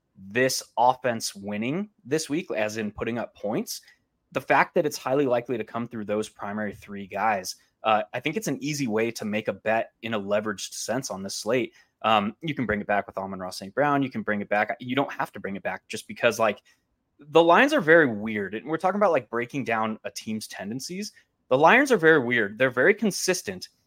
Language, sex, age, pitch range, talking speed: English, male, 20-39, 110-160 Hz, 225 wpm